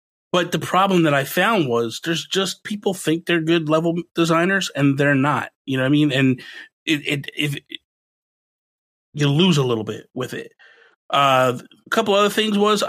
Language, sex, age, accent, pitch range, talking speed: English, male, 30-49, American, 135-175 Hz, 195 wpm